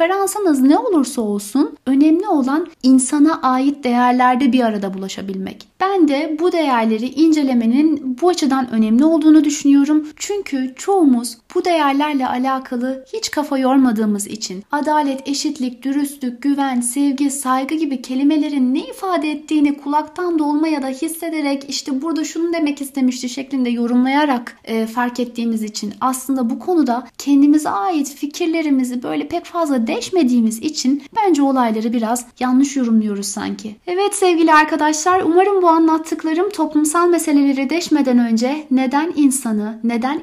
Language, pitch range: Turkish, 255-310 Hz